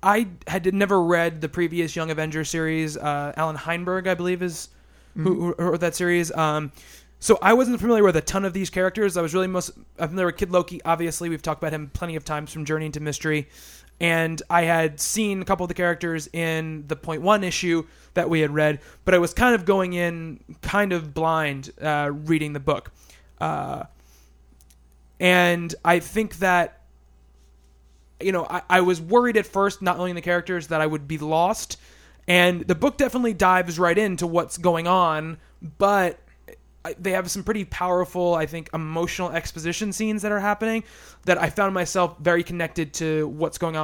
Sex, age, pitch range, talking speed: male, 20-39, 155-180 Hz, 190 wpm